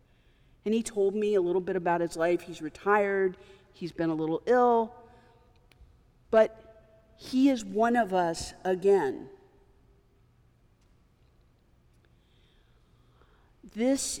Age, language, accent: 40-59, English, American